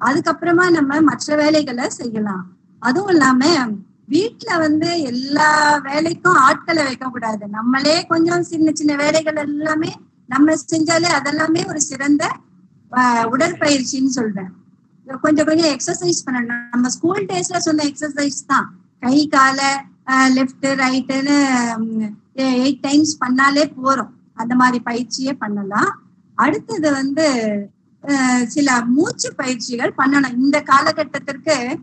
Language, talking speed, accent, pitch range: Tamil, 105 wpm, native, 245-315 Hz